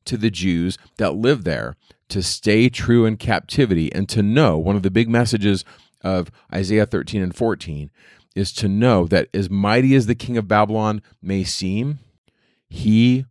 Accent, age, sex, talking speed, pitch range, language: American, 40-59, male, 170 wpm, 95-120 Hz, English